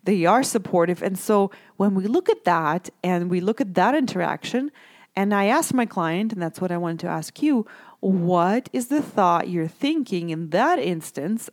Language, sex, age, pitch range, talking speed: English, female, 30-49, 175-240 Hz, 200 wpm